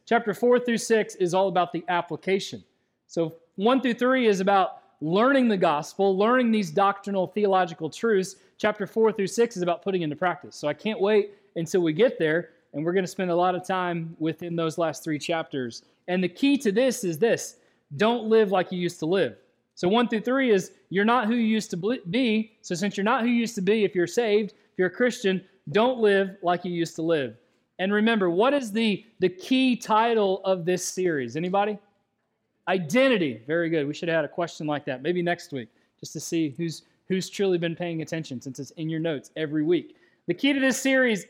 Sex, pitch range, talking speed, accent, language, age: male, 170-220 Hz, 220 wpm, American, English, 30-49